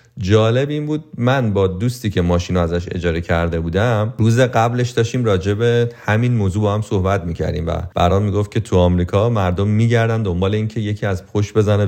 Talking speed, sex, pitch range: 180 wpm, male, 85-105 Hz